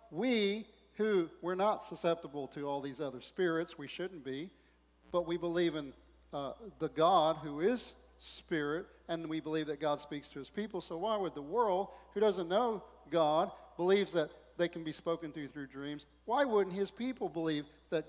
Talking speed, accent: 185 wpm, American